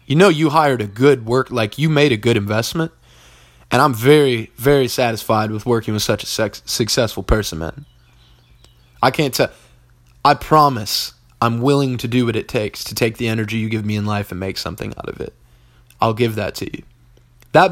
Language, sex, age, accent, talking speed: English, male, 20-39, American, 200 wpm